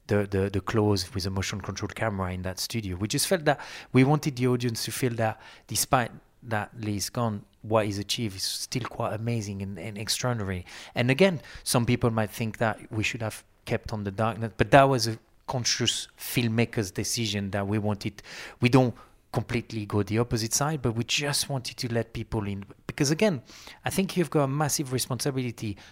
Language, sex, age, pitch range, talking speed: English, male, 30-49, 100-125 Hz, 195 wpm